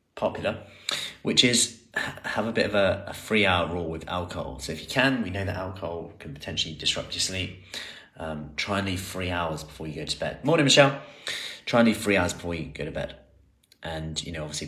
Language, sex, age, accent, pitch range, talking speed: English, male, 30-49, British, 80-100 Hz, 220 wpm